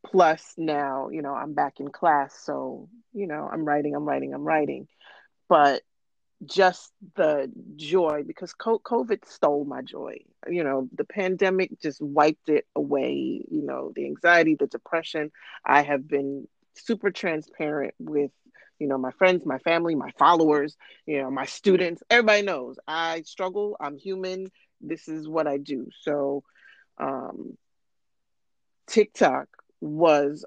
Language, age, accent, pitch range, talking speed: English, 30-49, American, 150-200 Hz, 145 wpm